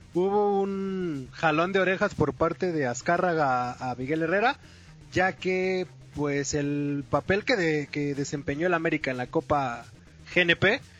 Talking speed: 145 wpm